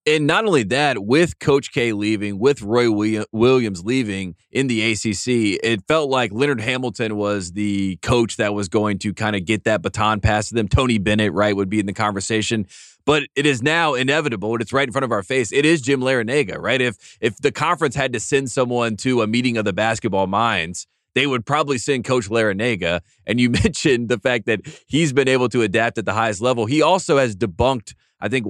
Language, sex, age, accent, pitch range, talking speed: English, male, 20-39, American, 105-130 Hz, 215 wpm